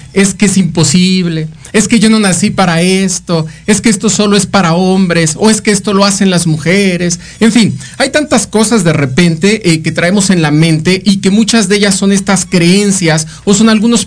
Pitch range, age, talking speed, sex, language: 160-210 Hz, 40-59, 215 wpm, male, Spanish